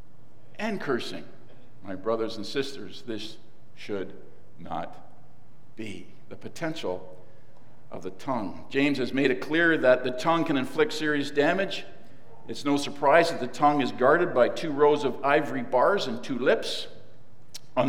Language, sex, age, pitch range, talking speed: English, male, 50-69, 125-150 Hz, 150 wpm